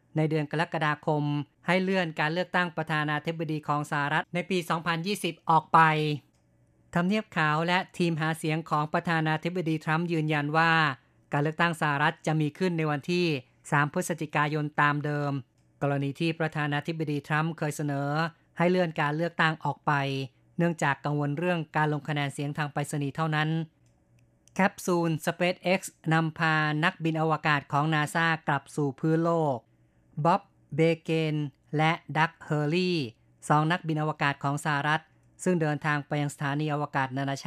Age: 20-39